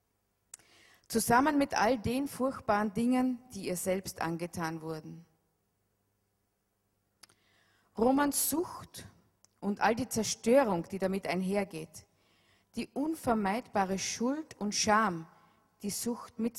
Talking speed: 100 wpm